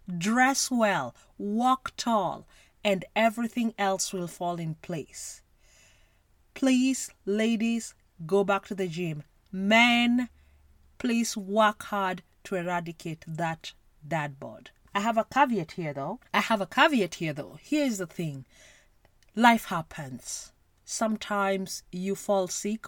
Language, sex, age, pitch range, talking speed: English, female, 30-49, 170-230 Hz, 125 wpm